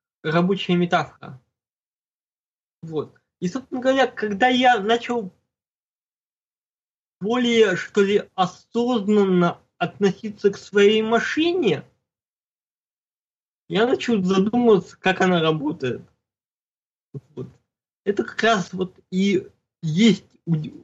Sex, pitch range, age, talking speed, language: male, 175-225 Hz, 20-39, 85 wpm, Russian